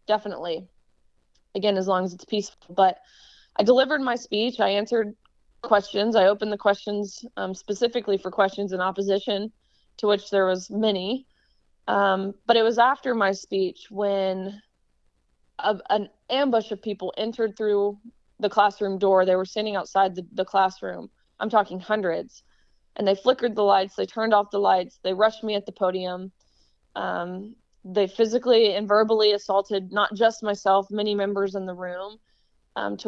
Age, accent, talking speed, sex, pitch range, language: 20-39, American, 160 wpm, female, 185-210 Hz, English